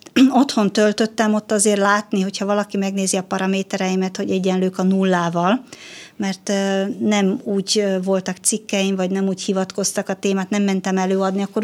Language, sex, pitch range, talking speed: Hungarian, female, 195-220 Hz, 150 wpm